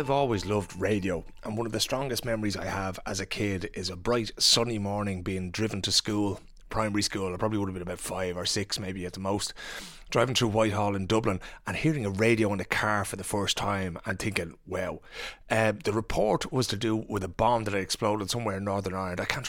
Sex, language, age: male, English, 30-49